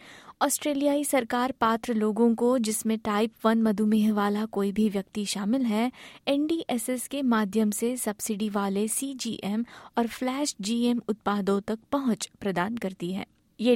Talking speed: 140 wpm